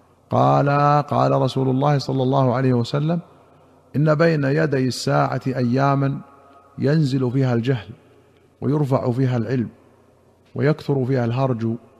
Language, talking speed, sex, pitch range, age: Arabic, 110 wpm, male, 120-140 Hz, 50-69